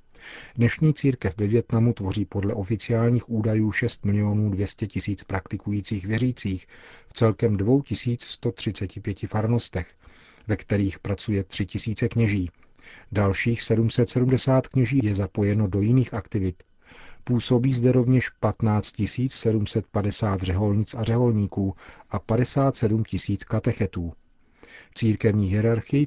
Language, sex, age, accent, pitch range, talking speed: Czech, male, 40-59, native, 100-120 Hz, 105 wpm